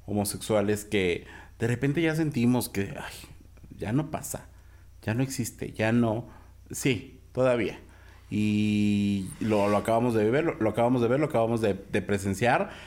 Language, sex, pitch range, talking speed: Spanish, male, 100-120 Hz, 160 wpm